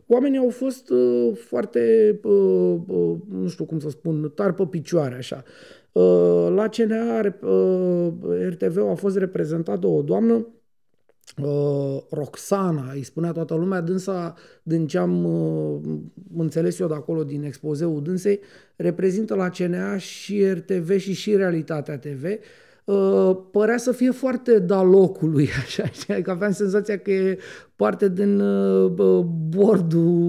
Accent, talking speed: native, 120 wpm